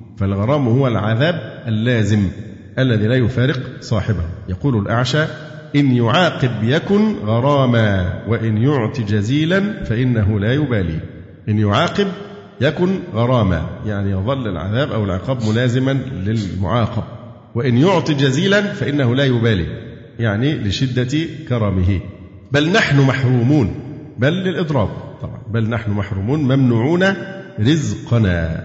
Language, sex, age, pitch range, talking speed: Arabic, male, 50-69, 110-145 Hz, 105 wpm